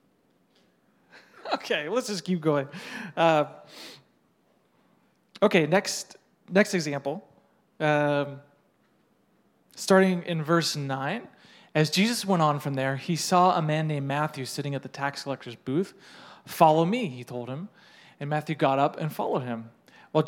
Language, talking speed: English, 135 wpm